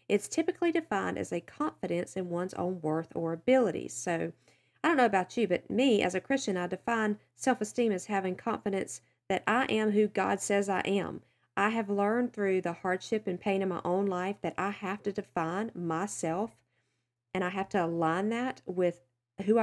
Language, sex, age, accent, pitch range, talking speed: English, female, 40-59, American, 185-245 Hz, 195 wpm